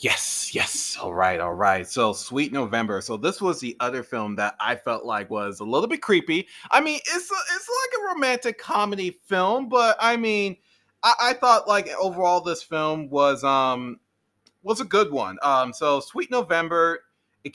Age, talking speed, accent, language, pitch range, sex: 30-49, 190 wpm, American, English, 125-175 Hz, male